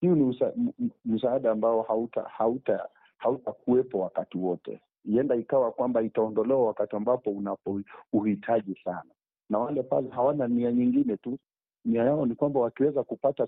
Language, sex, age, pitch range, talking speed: Swahili, male, 50-69, 105-135 Hz, 150 wpm